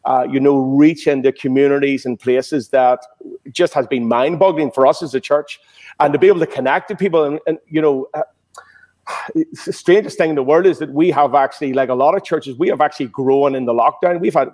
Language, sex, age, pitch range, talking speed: English, male, 40-59, 135-155 Hz, 230 wpm